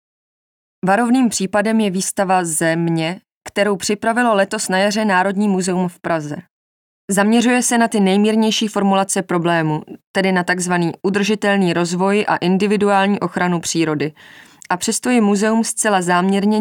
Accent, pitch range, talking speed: native, 175-205 Hz, 130 wpm